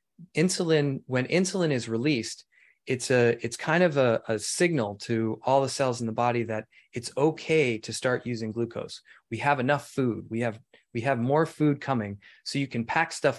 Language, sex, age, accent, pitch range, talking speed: English, male, 20-39, American, 115-140 Hz, 195 wpm